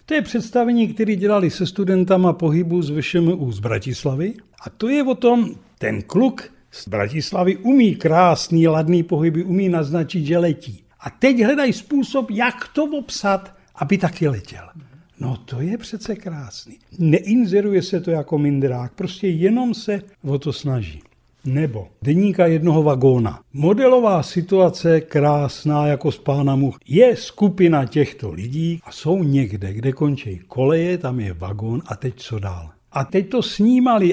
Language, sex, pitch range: Czech, male, 145-210 Hz